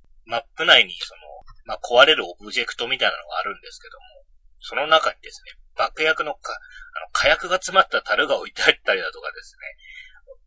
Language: Japanese